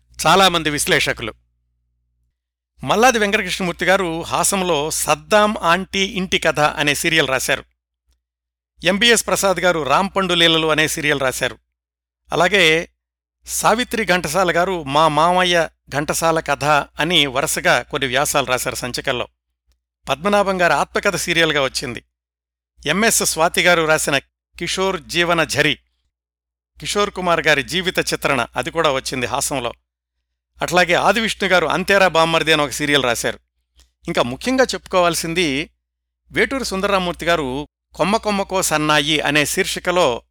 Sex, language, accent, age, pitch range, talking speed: male, Telugu, native, 60-79, 120-180 Hz, 110 wpm